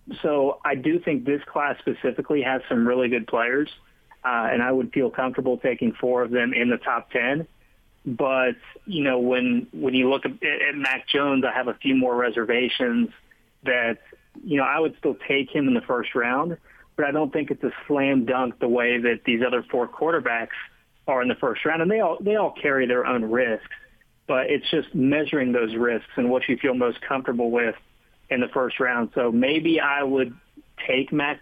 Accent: American